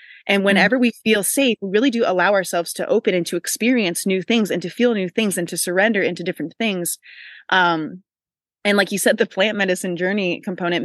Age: 20-39